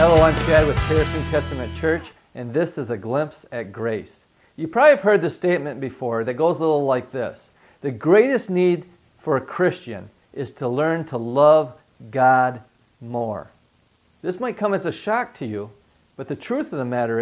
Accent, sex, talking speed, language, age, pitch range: American, male, 190 wpm, English, 50-69, 130-185 Hz